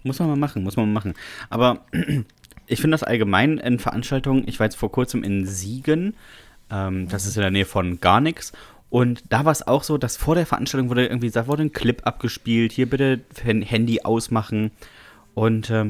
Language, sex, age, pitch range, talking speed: German, male, 30-49, 110-150 Hz, 195 wpm